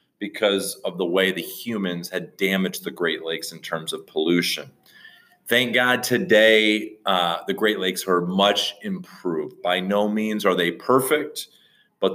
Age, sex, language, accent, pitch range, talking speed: 30-49, male, English, American, 90-110 Hz, 160 wpm